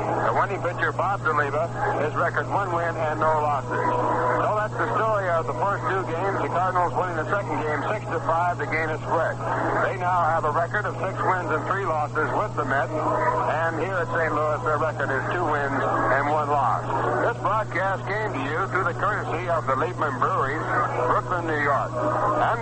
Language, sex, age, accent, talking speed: English, male, 60-79, American, 205 wpm